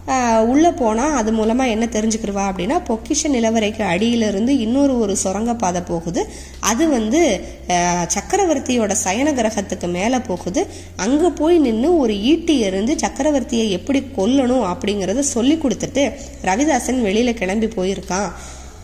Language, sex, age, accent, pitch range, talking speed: Tamil, female, 20-39, native, 200-260 Hz, 120 wpm